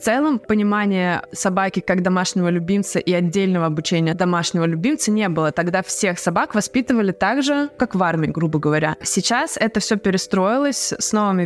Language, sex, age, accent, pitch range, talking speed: Russian, female, 20-39, native, 175-225 Hz, 160 wpm